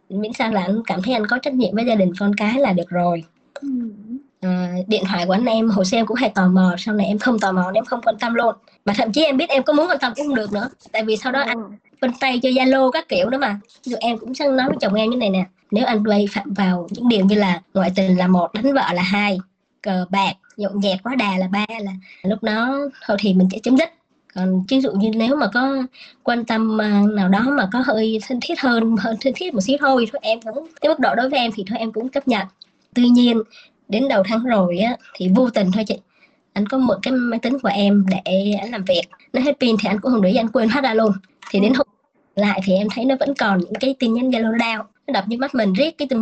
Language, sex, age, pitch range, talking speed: Vietnamese, male, 20-39, 200-260 Hz, 275 wpm